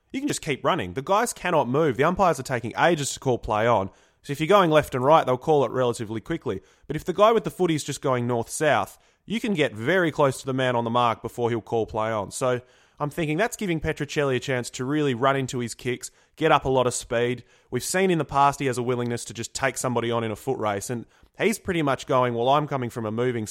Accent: Australian